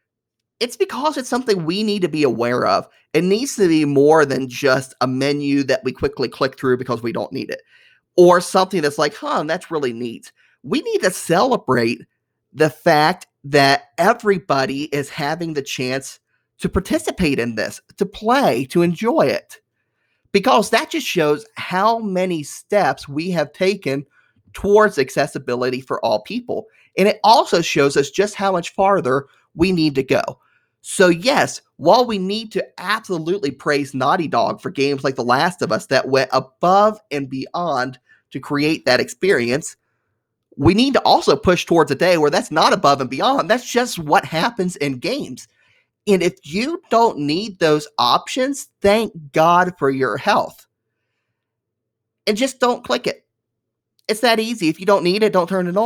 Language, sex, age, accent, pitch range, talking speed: English, male, 30-49, American, 140-210 Hz, 170 wpm